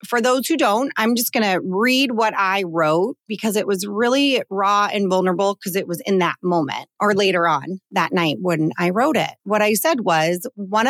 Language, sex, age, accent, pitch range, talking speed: English, female, 30-49, American, 175-235 Hz, 215 wpm